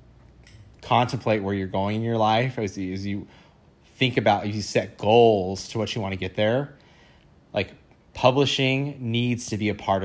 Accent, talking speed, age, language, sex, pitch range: American, 175 wpm, 20-39, English, male, 95-115 Hz